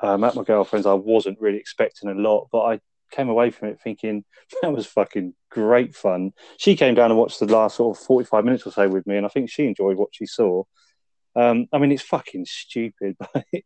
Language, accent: English, British